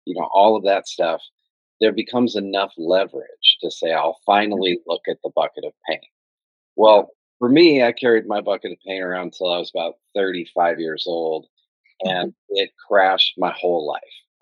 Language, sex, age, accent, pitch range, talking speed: English, male, 40-59, American, 95-115 Hz, 185 wpm